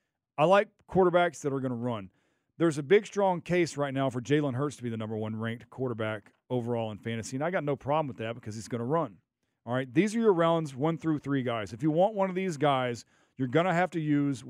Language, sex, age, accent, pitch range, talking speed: English, male, 40-59, American, 125-170 Hz, 260 wpm